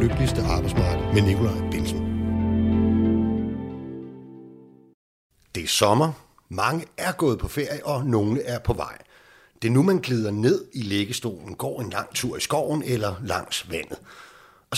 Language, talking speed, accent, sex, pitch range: Danish, 145 wpm, native, male, 105-140 Hz